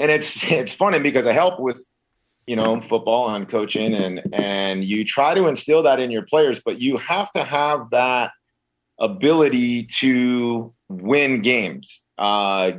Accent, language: American, English